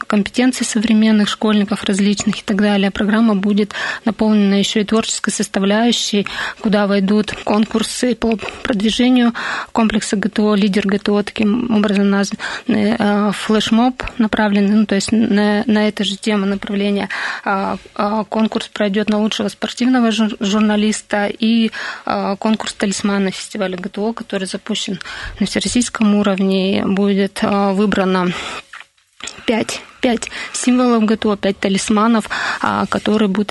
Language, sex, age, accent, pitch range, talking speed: Russian, female, 20-39, native, 200-220 Hz, 110 wpm